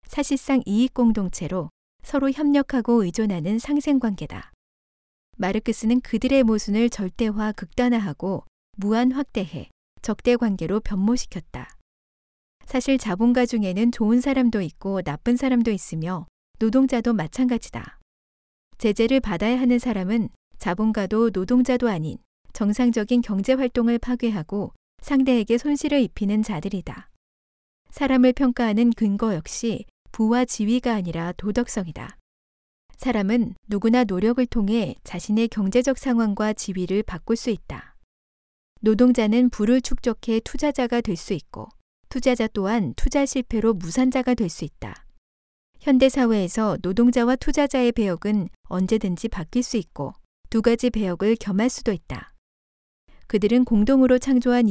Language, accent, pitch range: Korean, native, 195-245 Hz